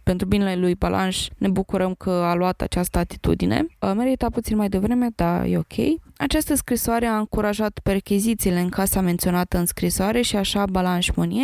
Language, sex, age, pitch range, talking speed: Romanian, female, 20-39, 185-215 Hz, 170 wpm